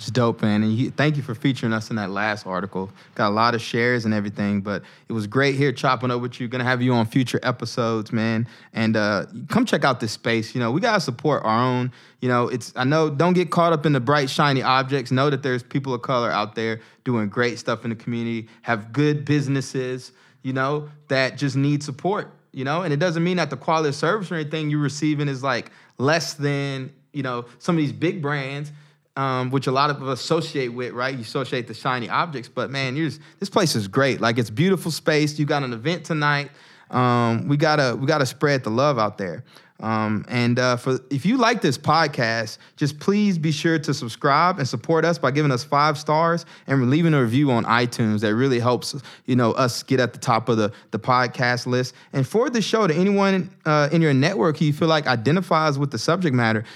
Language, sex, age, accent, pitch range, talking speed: English, male, 20-39, American, 120-150 Hz, 235 wpm